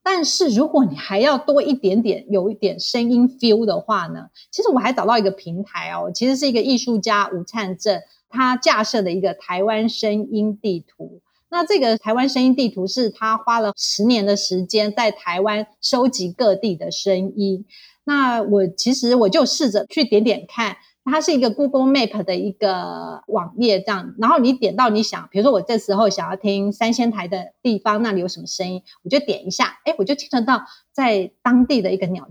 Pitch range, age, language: 195-255 Hz, 30-49, Chinese